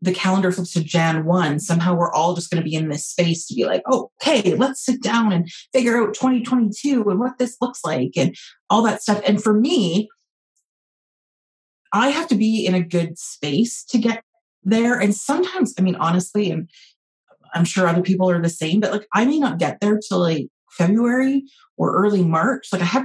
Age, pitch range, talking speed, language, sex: 30-49, 165-215 Hz, 210 wpm, English, female